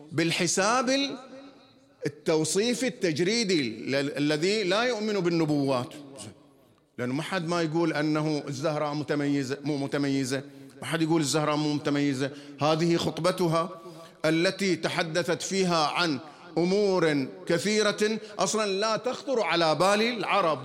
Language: English